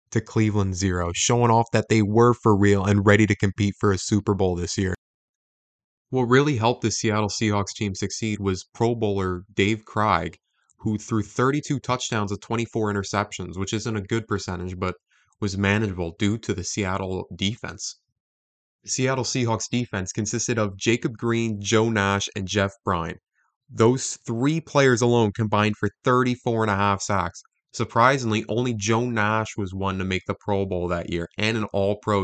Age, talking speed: 20-39, 170 wpm